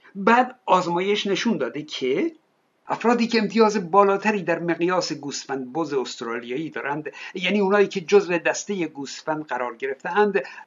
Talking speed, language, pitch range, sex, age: 135 wpm, Persian, 170-215 Hz, male, 60-79